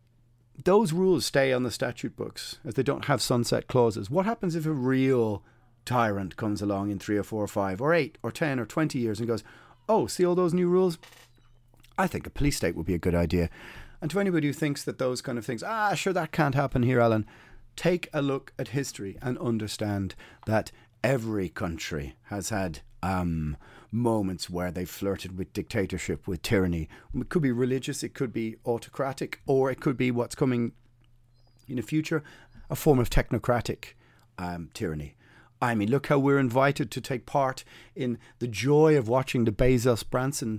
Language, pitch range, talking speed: English, 110-140 Hz, 190 wpm